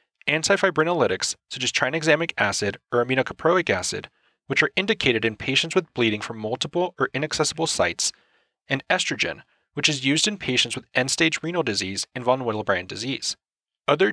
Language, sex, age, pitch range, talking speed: English, male, 30-49, 120-170 Hz, 155 wpm